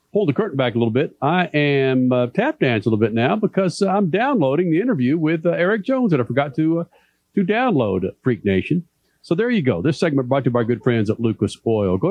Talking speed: 265 wpm